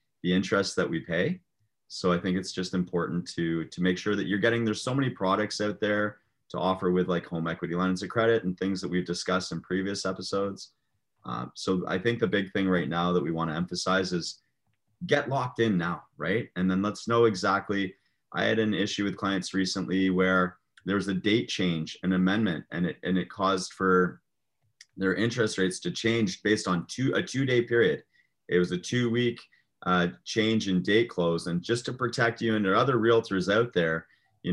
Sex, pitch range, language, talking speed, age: male, 90-110 Hz, English, 210 wpm, 30-49